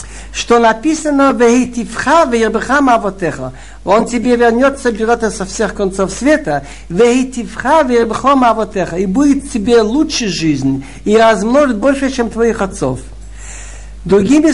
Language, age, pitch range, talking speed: Russian, 60-79, 195-260 Hz, 90 wpm